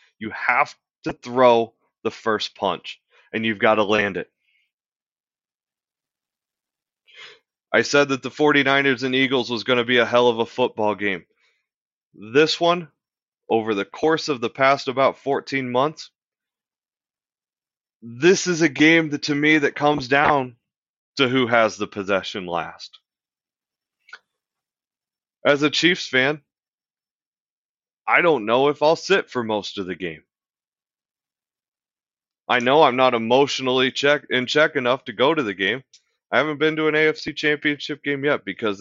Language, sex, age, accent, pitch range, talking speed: English, male, 30-49, American, 110-145 Hz, 145 wpm